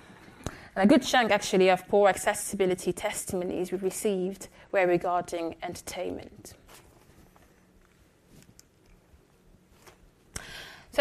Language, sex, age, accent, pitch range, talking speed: English, female, 20-39, British, 185-205 Hz, 75 wpm